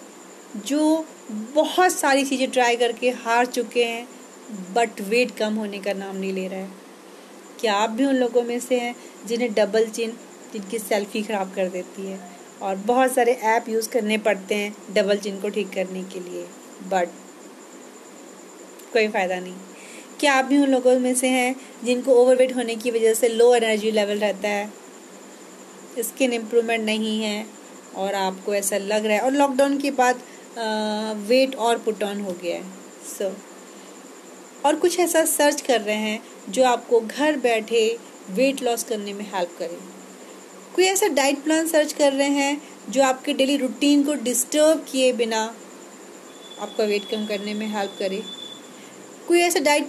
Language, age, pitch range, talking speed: Hindi, 30-49, 210-265 Hz, 170 wpm